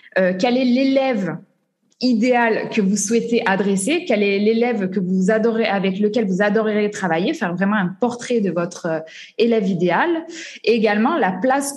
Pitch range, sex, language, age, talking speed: 195-250 Hz, female, French, 20-39, 165 wpm